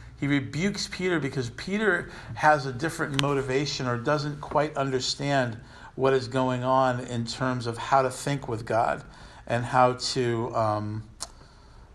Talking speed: 145 wpm